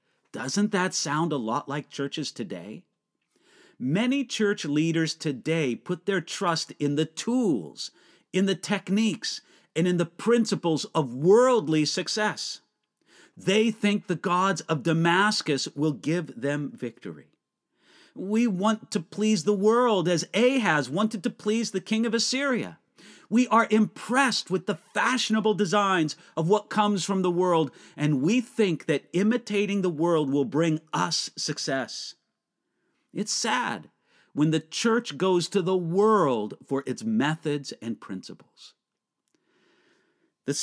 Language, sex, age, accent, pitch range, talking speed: English, male, 50-69, American, 155-215 Hz, 135 wpm